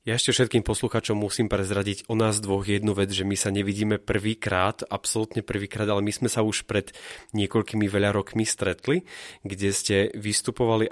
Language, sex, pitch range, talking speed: Slovak, male, 100-115 Hz, 170 wpm